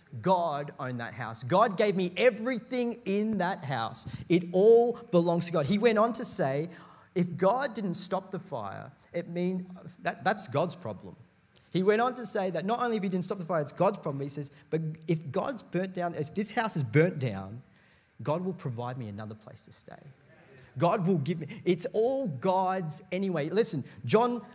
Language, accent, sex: English, Australian, male